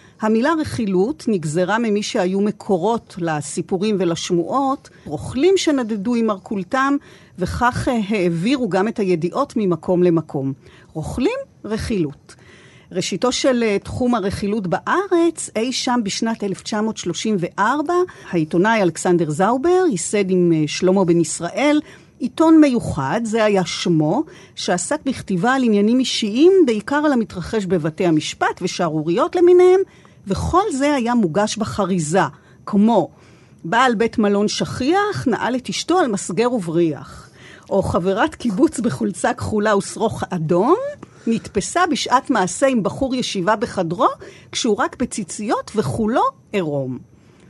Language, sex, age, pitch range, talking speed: Hebrew, female, 50-69, 180-255 Hz, 115 wpm